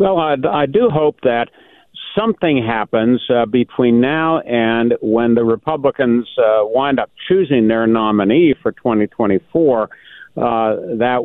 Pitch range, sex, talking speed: 110-145 Hz, male, 135 wpm